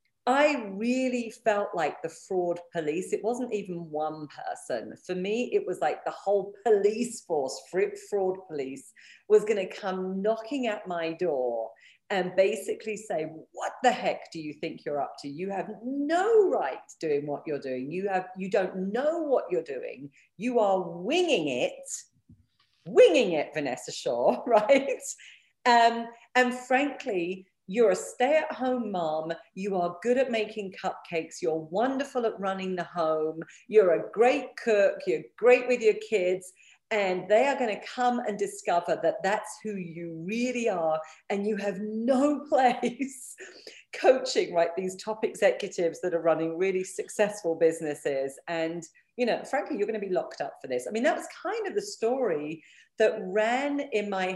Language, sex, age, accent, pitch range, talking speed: English, female, 40-59, British, 180-270 Hz, 165 wpm